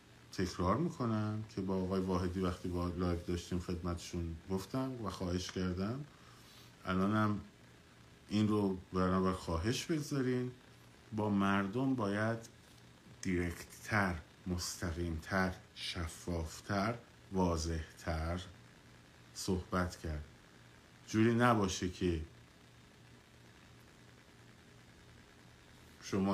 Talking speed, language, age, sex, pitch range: 75 wpm, Persian, 50-69, male, 80-105 Hz